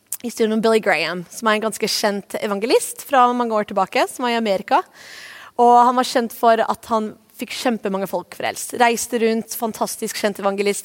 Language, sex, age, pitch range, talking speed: English, female, 20-39, 210-255 Hz, 200 wpm